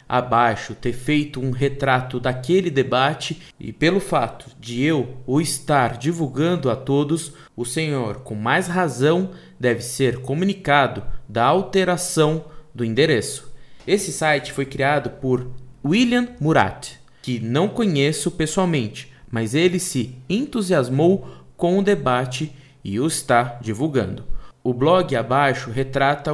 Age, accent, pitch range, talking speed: 20-39, Brazilian, 125-160 Hz, 125 wpm